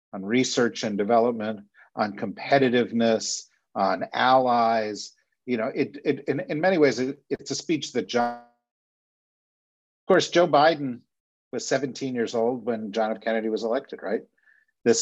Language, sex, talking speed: English, male, 150 wpm